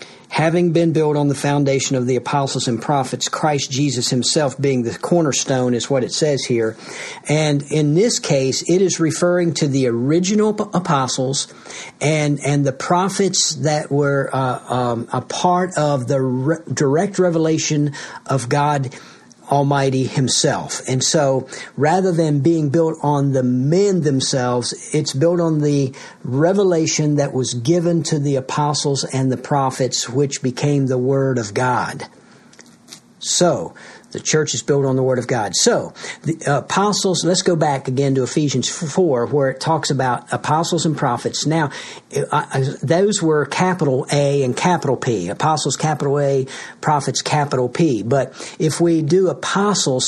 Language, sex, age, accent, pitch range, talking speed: English, male, 50-69, American, 130-165 Hz, 155 wpm